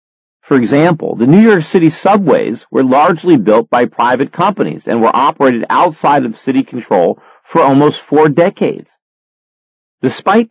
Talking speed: 145 wpm